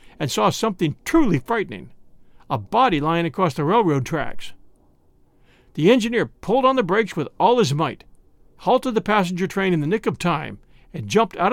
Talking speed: 175 wpm